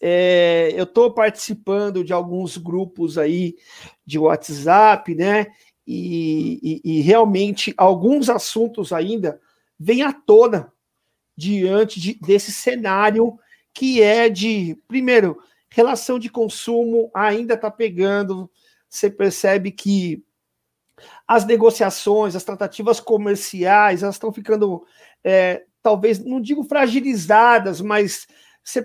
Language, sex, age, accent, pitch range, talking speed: Portuguese, male, 50-69, Brazilian, 200-235 Hz, 105 wpm